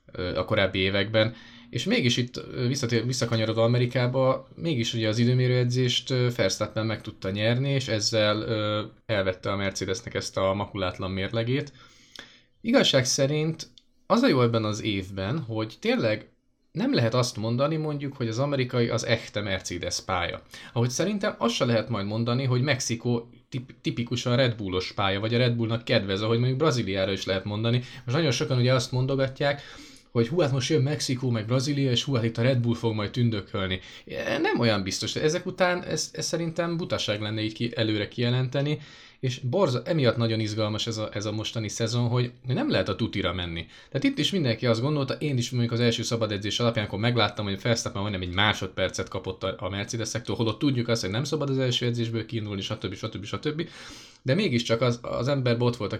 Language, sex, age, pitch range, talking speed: Hungarian, male, 20-39, 105-130 Hz, 185 wpm